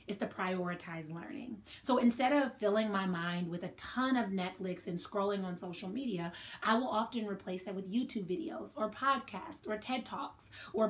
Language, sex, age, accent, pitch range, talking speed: English, female, 30-49, American, 170-235 Hz, 185 wpm